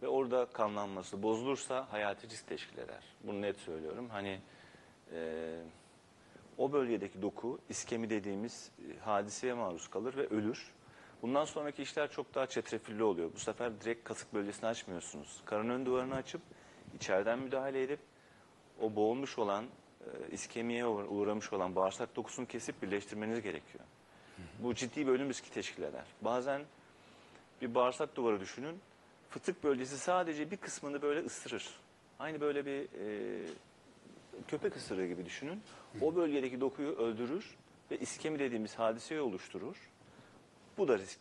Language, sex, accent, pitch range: Turkish, male, native, 105-135 Hz